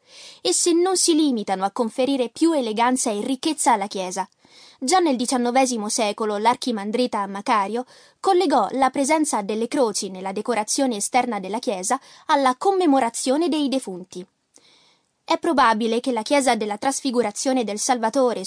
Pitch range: 225-315 Hz